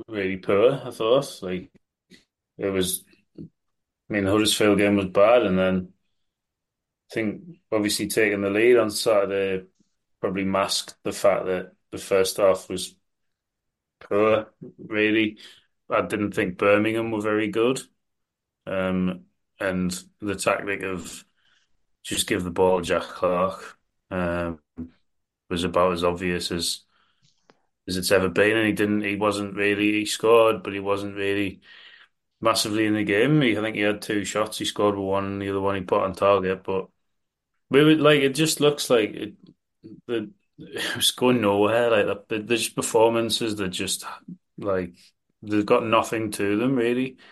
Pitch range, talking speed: 95-110 Hz, 155 wpm